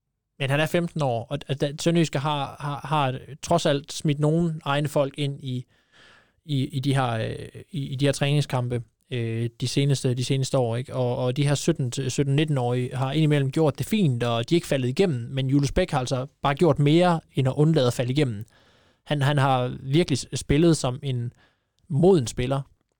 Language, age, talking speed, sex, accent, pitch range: Danish, 20-39, 190 wpm, male, native, 125-150 Hz